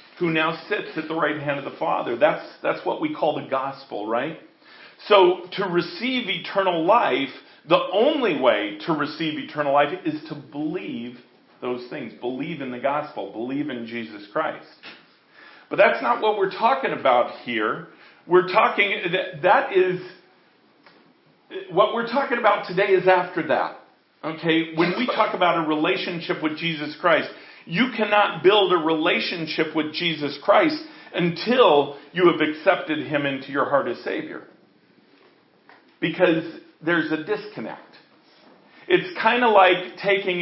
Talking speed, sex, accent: 150 wpm, male, American